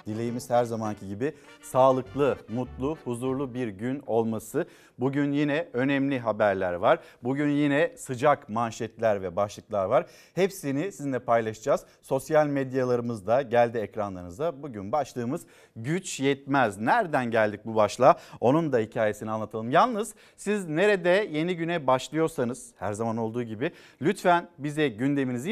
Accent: native